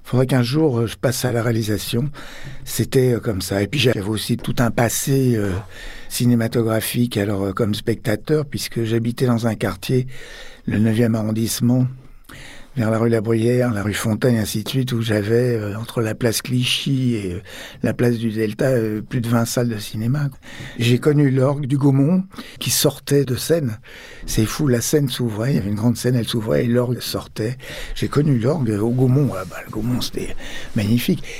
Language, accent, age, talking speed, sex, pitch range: French, French, 60-79, 185 wpm, male, 110-130 Hz